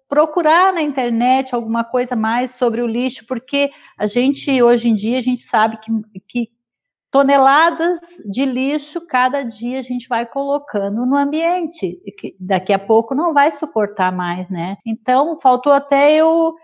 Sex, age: female, 30-49